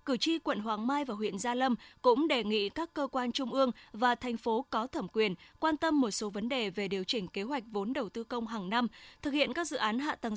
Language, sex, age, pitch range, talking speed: Vietnamese, female, 10-29, 220-275 Hz, 270 wpm